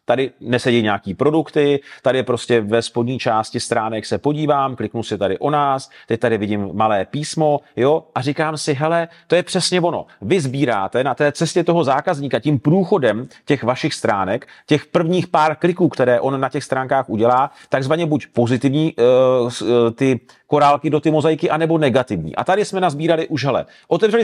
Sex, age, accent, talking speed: male, 40-59, native, 175 wpm